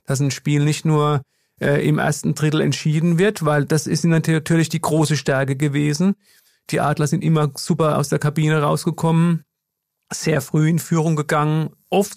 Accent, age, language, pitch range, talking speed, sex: German, 40-59, German, 140-160 Hz, 170 wpm, male